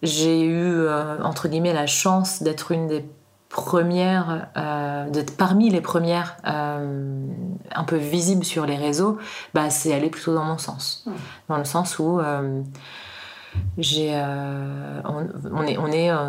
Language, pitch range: French, 150-175 Hz